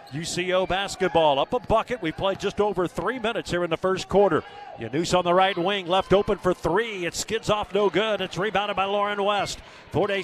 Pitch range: 170-225 Hz